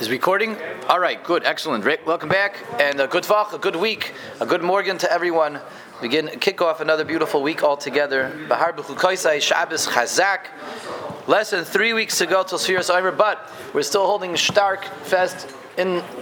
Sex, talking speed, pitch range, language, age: male, 150 wpm, 150-200 Hz, English, 30-49